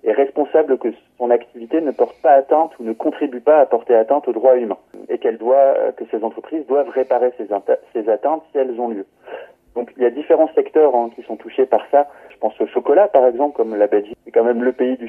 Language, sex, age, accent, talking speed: French, male, 30-49, French, 240 wpm